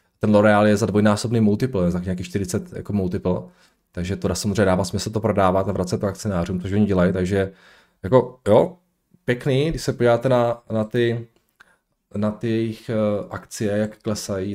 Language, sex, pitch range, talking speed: Czech, male, 95-120 Hz, 175 wpm